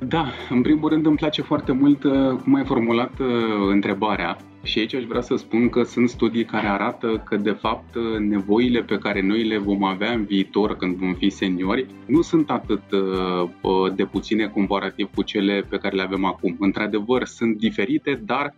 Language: Romanian